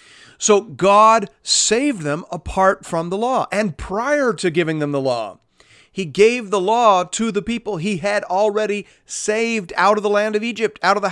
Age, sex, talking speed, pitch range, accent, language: 40-59, male, 190 wpm, 120-190 Hz, American, English